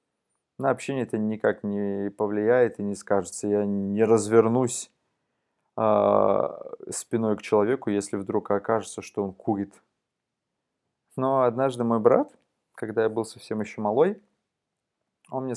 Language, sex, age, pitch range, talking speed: Russian, male, 20-39, 105-125 Hz, 130 wpm